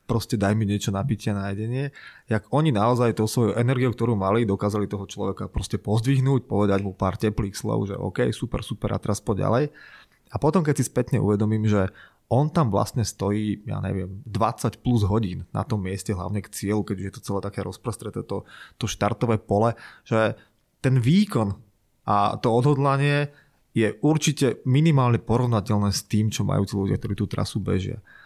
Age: 20-39